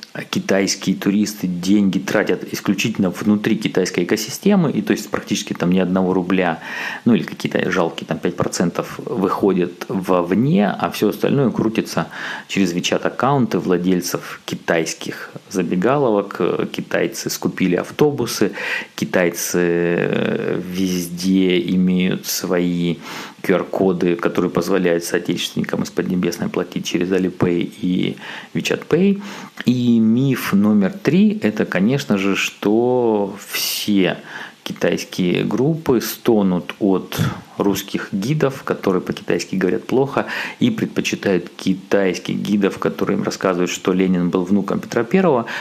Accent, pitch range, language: native, 90-115 Hz, Russian